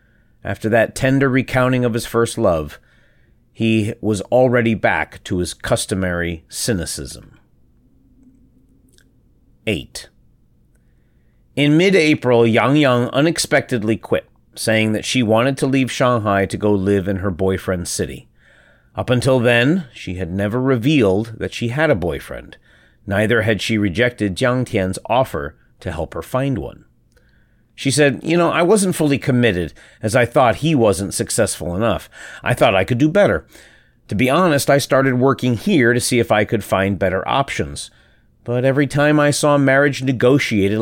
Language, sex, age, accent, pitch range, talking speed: English, male, 30-49, American, 100-130 Hz, 155 wpm